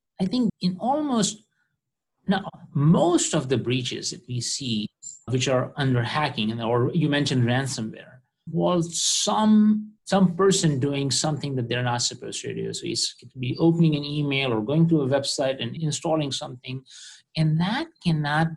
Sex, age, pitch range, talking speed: male, 50-69, 125-165 Hz, 165 wpm